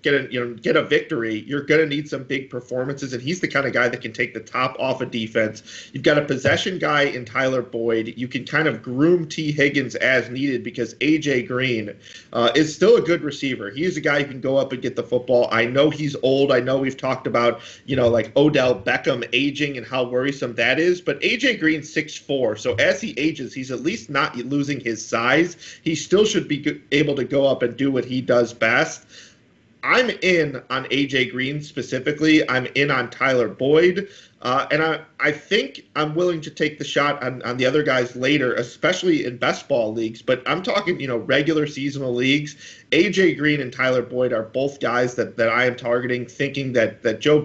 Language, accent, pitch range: English, American, 120-150 Hz